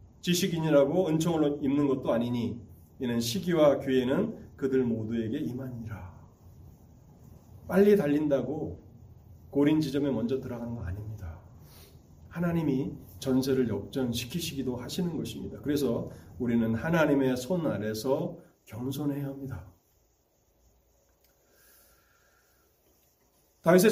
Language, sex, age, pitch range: Korean, male, 30-49, 115-170 Hz